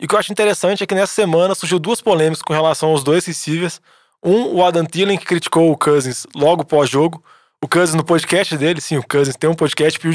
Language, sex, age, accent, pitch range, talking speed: Portuguese, male, 20-39, Brazilian, 150-185 Hz, 235 wpm